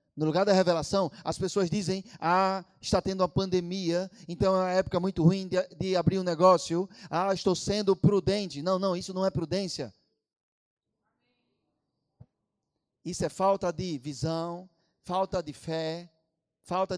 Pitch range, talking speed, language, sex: 165-195 Hz, 150 wpm, Portuguese, male